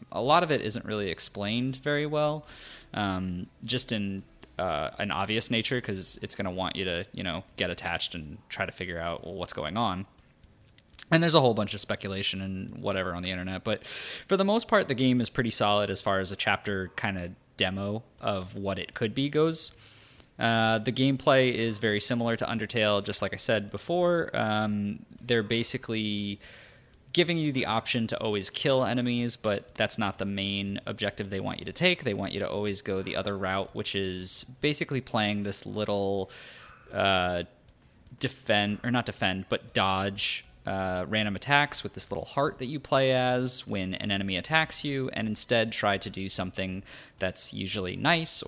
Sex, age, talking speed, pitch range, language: male, 20-39, 190 wpm, 95-125 Hz, English